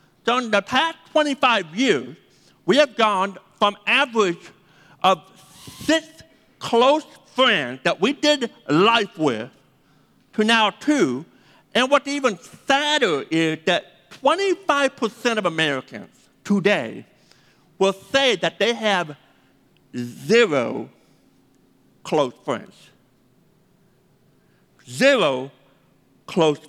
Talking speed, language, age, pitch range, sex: 95 wpm, English, 60-79, 190-270 Hz, male